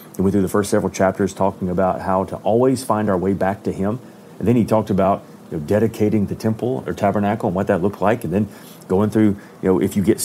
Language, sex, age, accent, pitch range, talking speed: English, male, 40-59, American, 95-115 Hz, 245 wpm